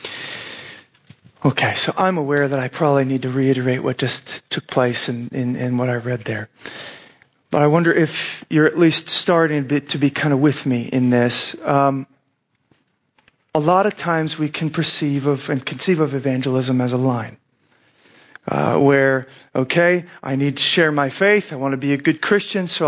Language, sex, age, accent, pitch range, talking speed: English, male, 40-59, American, 145-205 Hz, 190 wpm